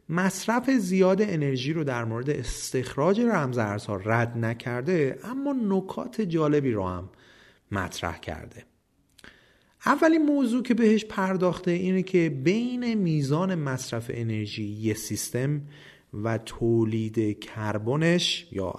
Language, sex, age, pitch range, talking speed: Persian, male, 30-49, 105-170 Hz, 110 wpm